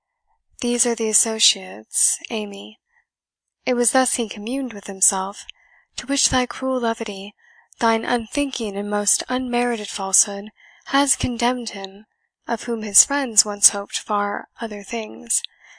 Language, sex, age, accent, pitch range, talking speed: English, female, 10-29, American, 205-250 Hz, 135 wpm